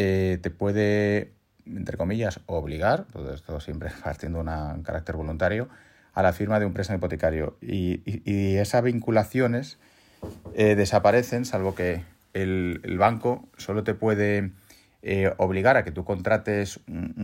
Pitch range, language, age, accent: 90-115 Hz, Spanish, 30-49, Spanish